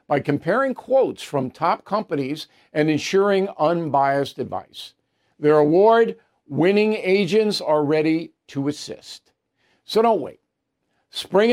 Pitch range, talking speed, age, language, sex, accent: 155-200 Hz, 110 wpm, 50-69, English, male, American